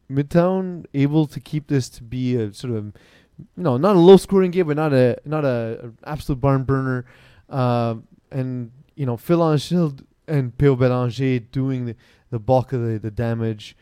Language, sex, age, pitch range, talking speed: English, male, 30-49, 115-140 Hz, 180 wpm